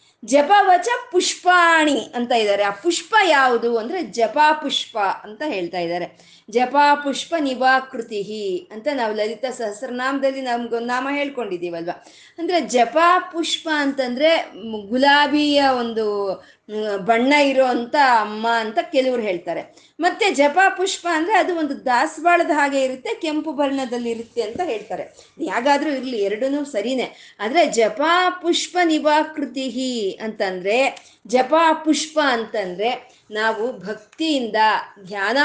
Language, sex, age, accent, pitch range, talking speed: Kannada, female, 20-39, native, 225-310 Hz, 110 wpm